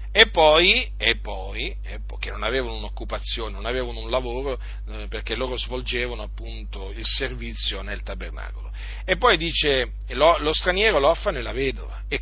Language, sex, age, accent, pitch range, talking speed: Italian, male, 40-59, native, 125-175 Hz, 155 wpm